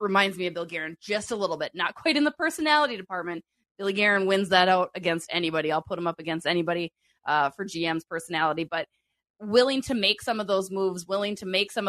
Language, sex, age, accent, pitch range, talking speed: English, female, 20-39, American, 175-220 Hz, 220 wpm